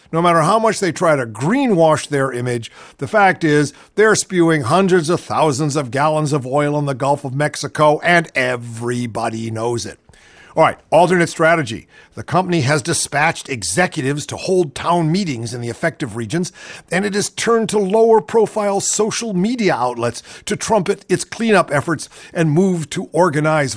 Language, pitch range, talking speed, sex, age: English, 130-190 Hz, 165 wpm, male, 50-69